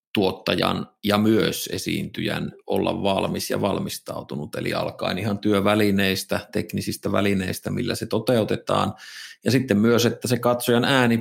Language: Finnish